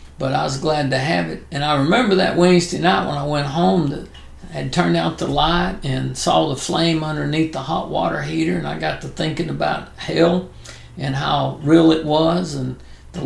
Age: 60-79